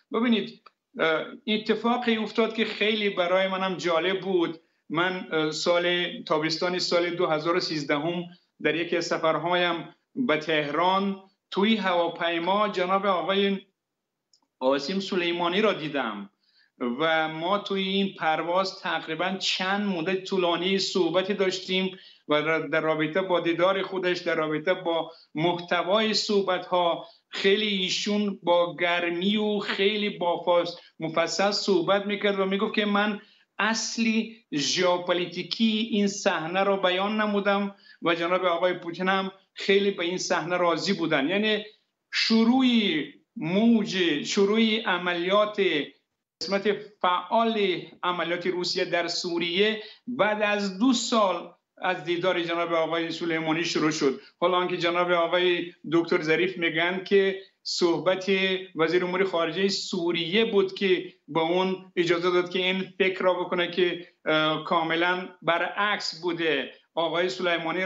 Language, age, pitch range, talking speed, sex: Persian, 50-69, 170-200 Hz, 115 wpm, male